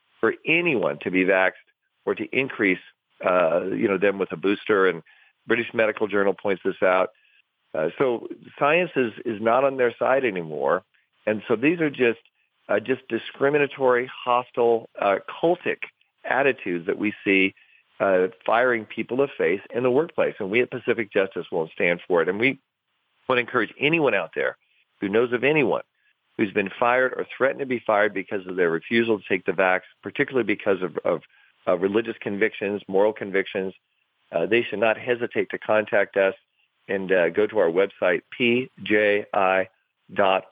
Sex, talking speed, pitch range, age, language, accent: male, 175 wpm, 95-120 Hz, 40-59, English, American